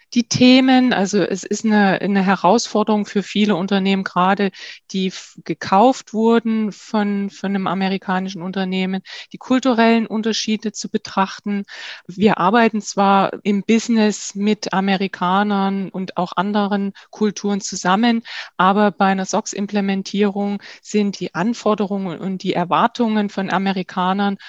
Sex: female